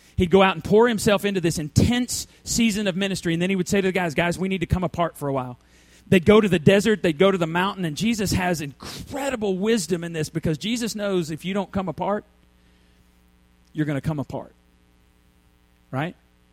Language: English